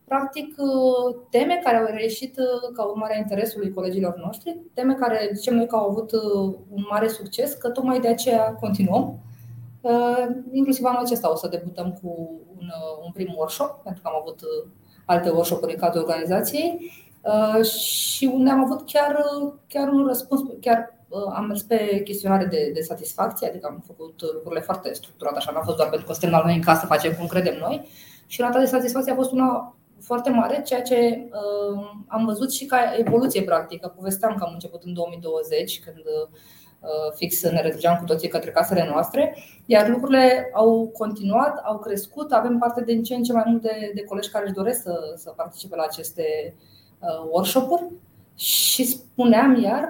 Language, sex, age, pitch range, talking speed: Romanian, female, 20-39, 180-250 Hz, 180 wpm